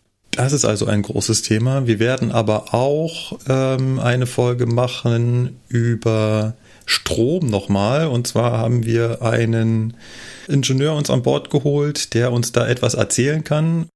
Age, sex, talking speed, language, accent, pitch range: 30-49, male, 140 wpm, German, German, 110-135 Hz